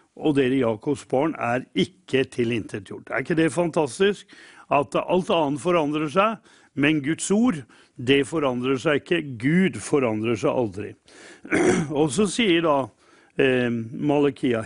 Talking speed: 130 wpm